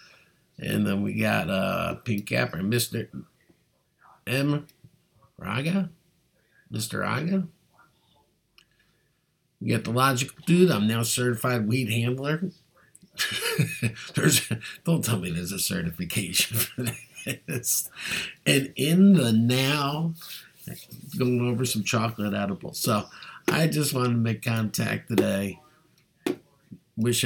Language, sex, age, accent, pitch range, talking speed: English, male, 50-69, American, 100-135 Hz, 105 wpm